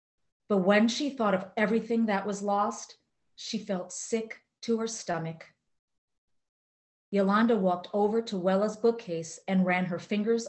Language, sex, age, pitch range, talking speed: English, female, 30-49, 170-210 Hz, 145 wpm